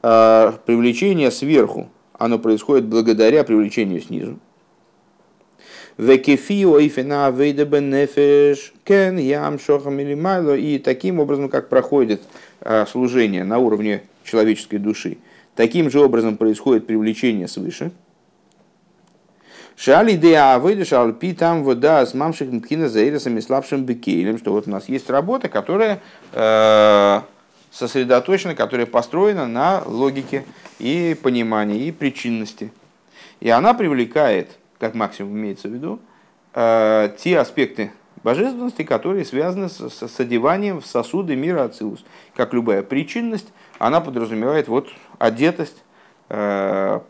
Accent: native